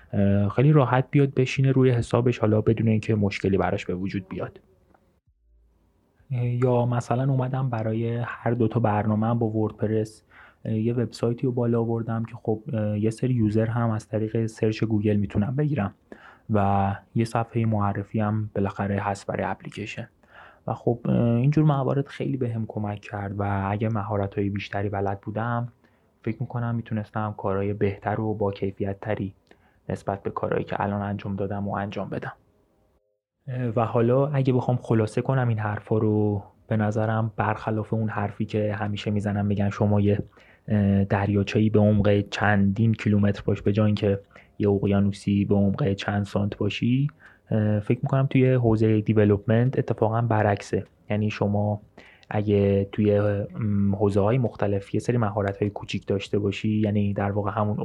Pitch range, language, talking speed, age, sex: 100-115 Hz, Persian, 150 wpm, 20-39, male